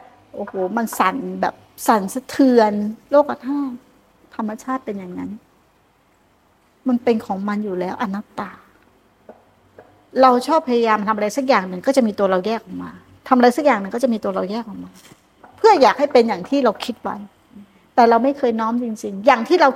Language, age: Thai, 60-79